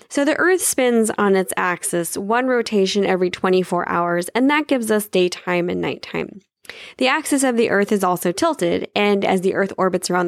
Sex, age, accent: female, 10-29, American